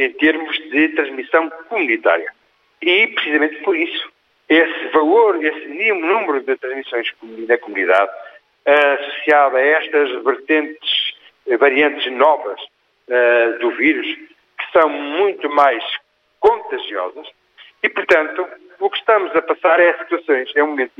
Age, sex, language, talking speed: 60-79, male, Portuguese, 120 wpm